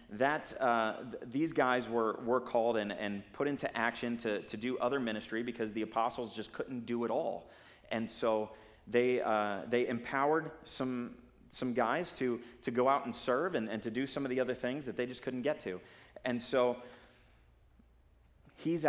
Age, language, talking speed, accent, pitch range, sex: 30-49, English, 185 wpm, American, 110-135 Hz, male